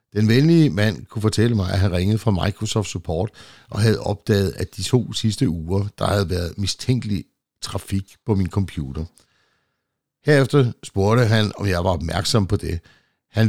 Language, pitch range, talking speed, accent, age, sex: Danish, 90-110 Hz, 170 wpm, native, 60-79, male